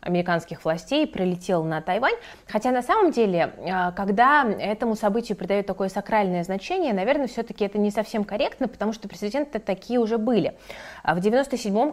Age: 20-39